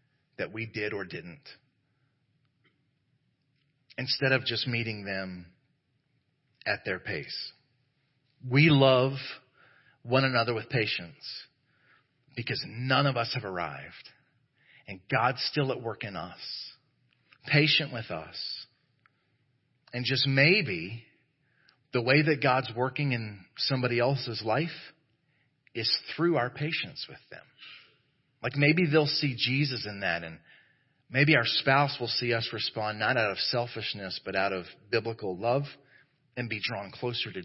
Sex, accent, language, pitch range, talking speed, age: male, American, English, 120-145 Hz, 130 wpm, 40-59